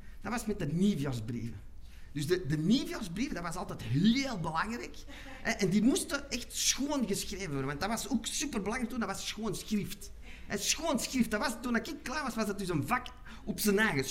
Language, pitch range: Dutch, 185-250 Hz